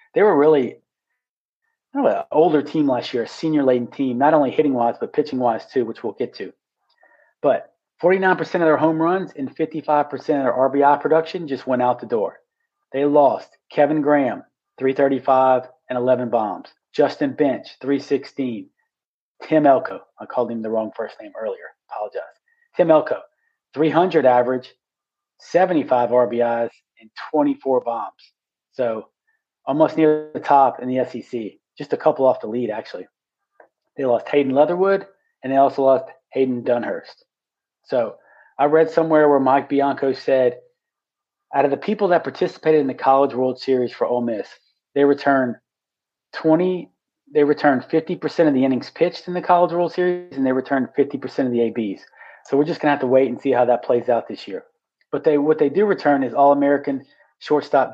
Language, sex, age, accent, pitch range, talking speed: English, male, 40-59, American, 130-170 Hz, 175 wpm